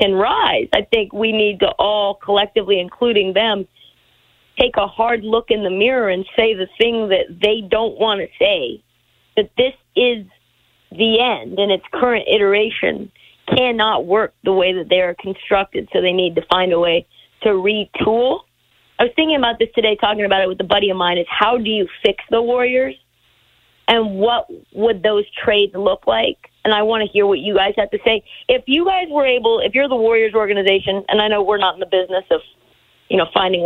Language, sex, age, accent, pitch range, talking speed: English, female, 40-59, American, 190-230 Hz, 205 wpm